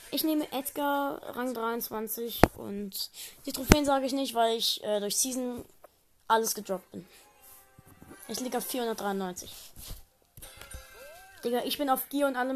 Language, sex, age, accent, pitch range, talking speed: German, female, 20-39, German, 205-290 Hz, 145 wpm